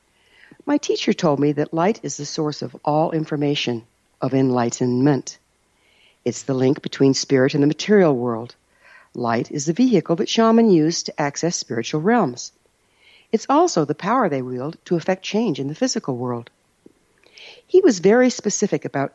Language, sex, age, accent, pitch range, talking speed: English, female, 60-79, American, 130-210 Hz, 165 wpm